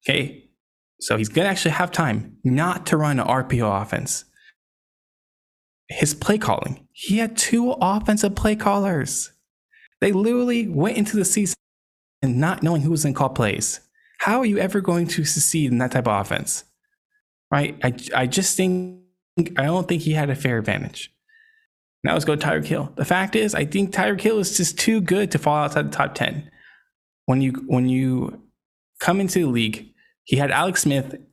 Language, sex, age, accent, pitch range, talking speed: English, male, 20-39, American, 140-200 Hz, 185 wpm